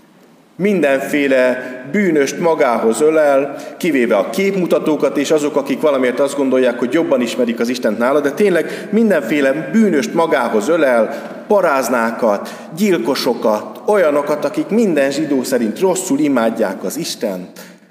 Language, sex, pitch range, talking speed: Hungarian, male, 130-220 Hz, 120 wpm